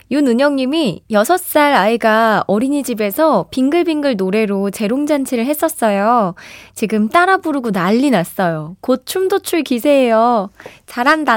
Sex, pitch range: female, 190-295 Hz